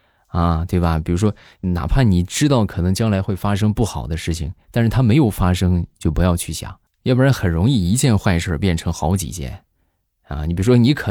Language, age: Chinese, 20-39